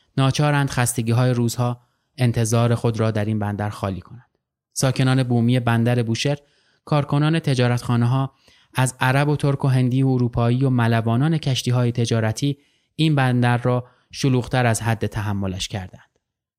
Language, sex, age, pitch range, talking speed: Persian, male, 20-39, 120-140 Hz, 145 wpm